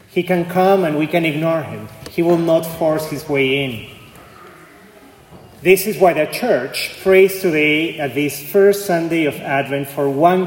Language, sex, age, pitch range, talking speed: English, male, 30-49, 135-175 Hz, 170 wpm